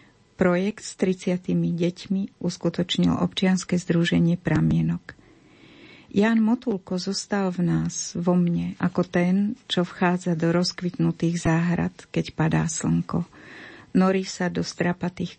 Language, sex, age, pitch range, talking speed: Slovak, female, 50-69, 170-190 Hz, 115 wpm